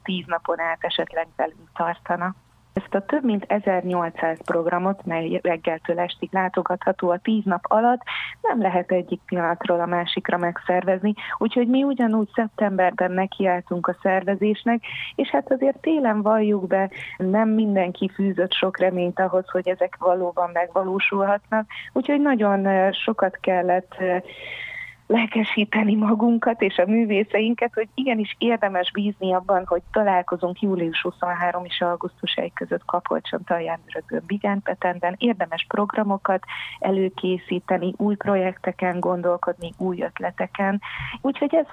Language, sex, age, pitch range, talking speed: Hungarian, female, 30-49, 180-215 Hz, 120 wpm